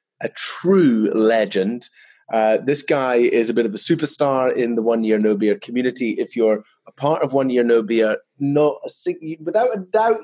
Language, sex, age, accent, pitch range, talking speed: English, male, 30-49, British, 110-155 Hz, 180 wpm